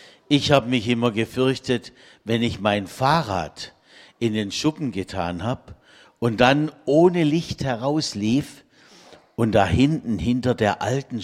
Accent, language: German, German